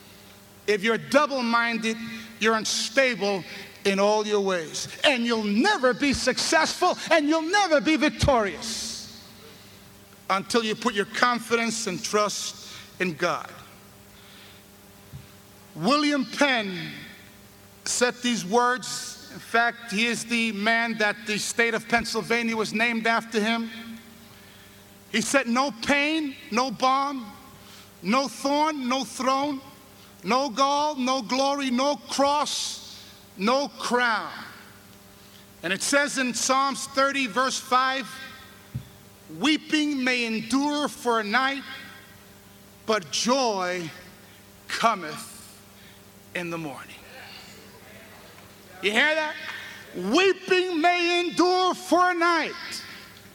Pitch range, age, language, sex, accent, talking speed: 185-275 Hz, 50-69, English, male, American, 105 wpm